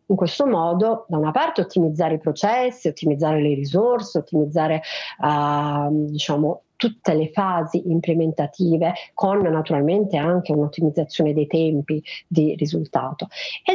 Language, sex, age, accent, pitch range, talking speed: Italian, female, 40-59, native, 160-200 Hz, 120 wpm